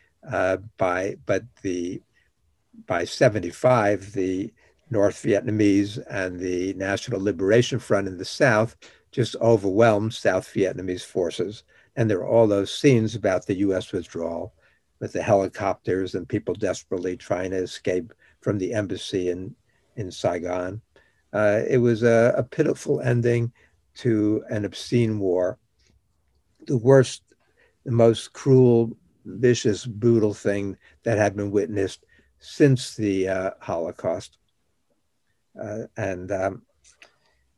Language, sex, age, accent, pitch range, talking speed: English, male, 60-79, American, 100-125 Hz, 125 wpm